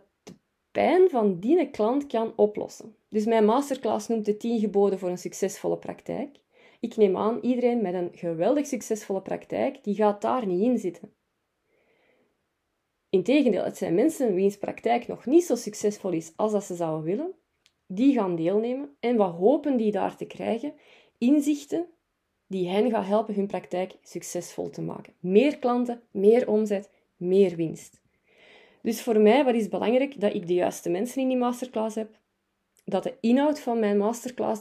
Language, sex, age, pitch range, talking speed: Dutch, female, 30-49, 185-235 Hz, 165 wpm